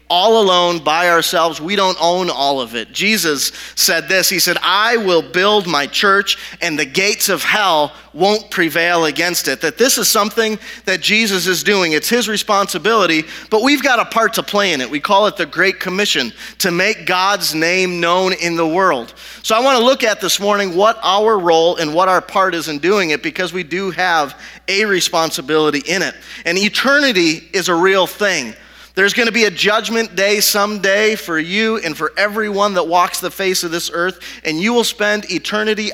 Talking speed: 200 wpm